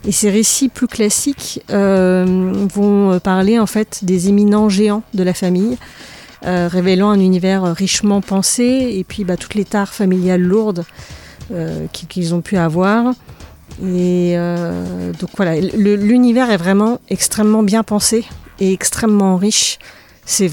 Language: French